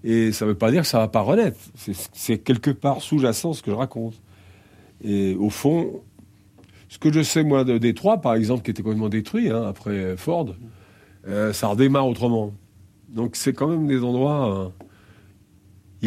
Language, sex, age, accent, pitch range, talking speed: French, male, 50-69, French, 100-130 Hz, 190 wpm